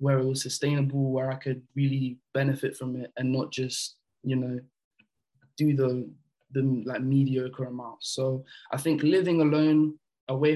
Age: 20-39